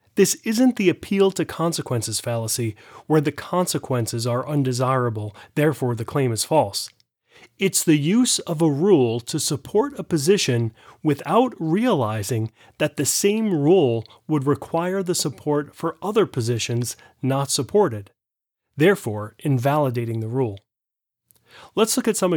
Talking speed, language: 130 wpm, English